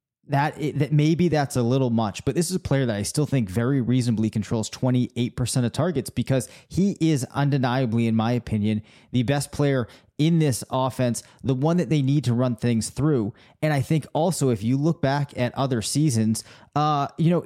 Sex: male